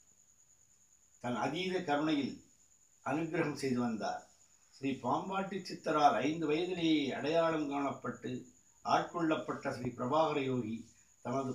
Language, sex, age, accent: Tamil, male, 60-79, native